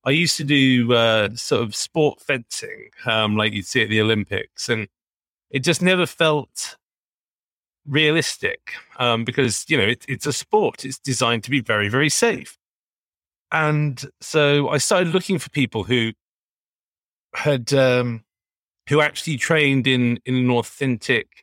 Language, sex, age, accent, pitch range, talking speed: English, male, 30-49, British, 115-150 Hz, 150 wpm